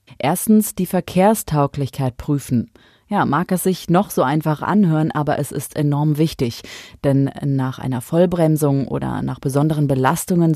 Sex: female